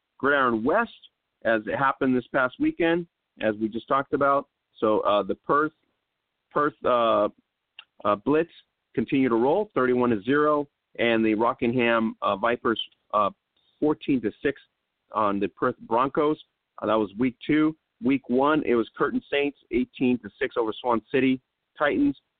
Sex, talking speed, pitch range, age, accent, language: male, 155 wpm, 115-135 Hz, 40-59, American, English